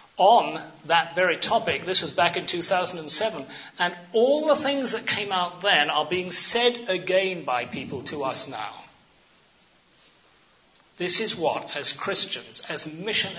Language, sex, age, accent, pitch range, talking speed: English, male, 40-59, British, 160-200 Hz, 150 wpm